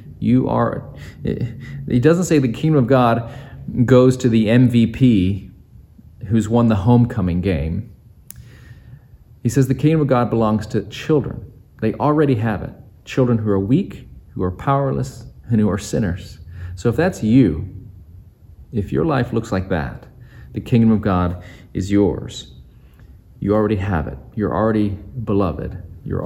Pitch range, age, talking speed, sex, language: 95-125 Hz, 40-59, 150 wpm, male, English